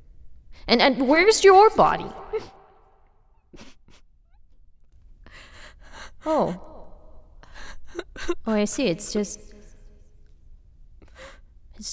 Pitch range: 210-350 Hz